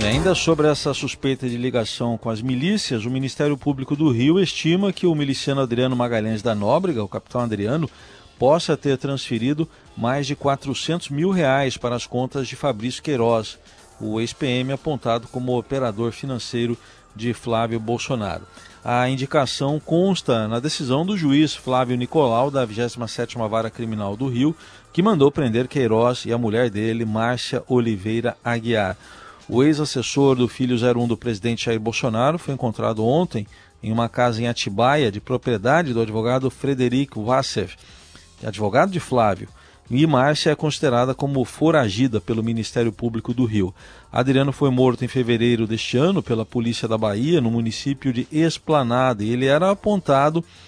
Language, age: Portuguese, 40-59